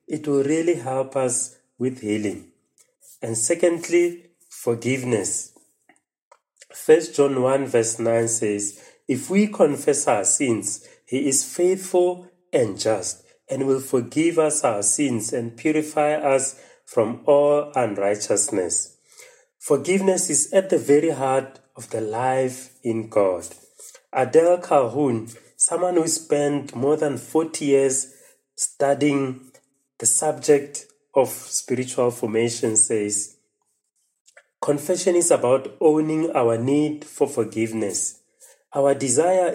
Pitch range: 125-160 Hz